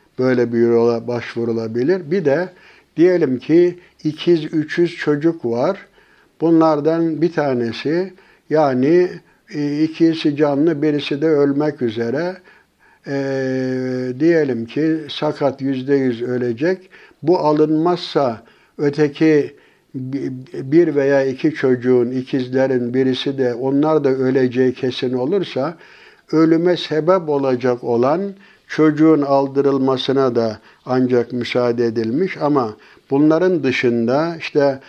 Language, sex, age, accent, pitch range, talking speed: Turkish, male, 60-79, native, 125-155 Hz, 100 wpm